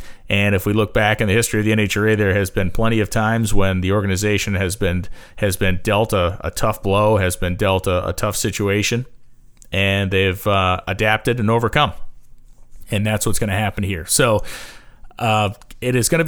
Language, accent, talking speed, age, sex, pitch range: English, American, 205 wpm, 30-49, male, 95-115 Hz